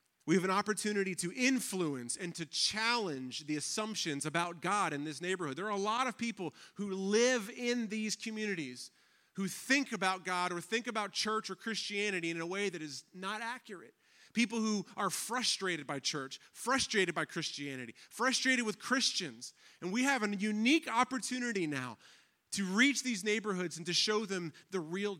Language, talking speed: English, 175 wpm